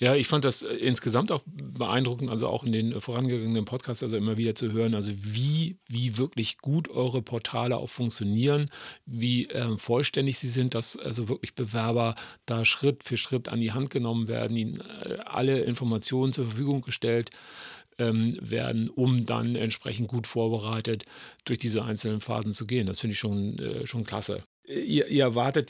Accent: German